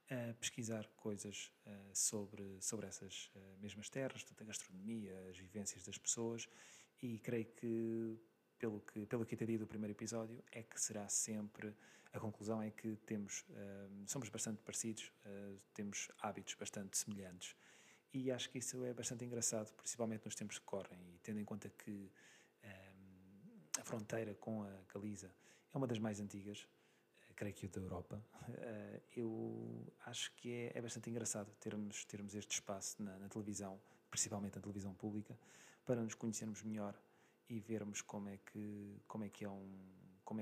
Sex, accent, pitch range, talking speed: male, Portuguese, 100-115 Hz, 160 wpm